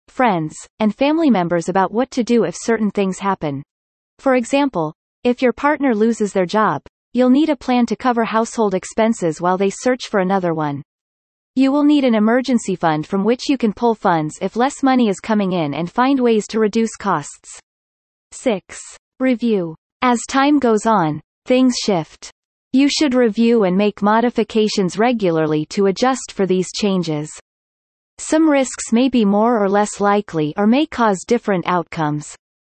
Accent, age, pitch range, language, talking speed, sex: American, 30-49, 185-245 Hz, English, 165 wpm, female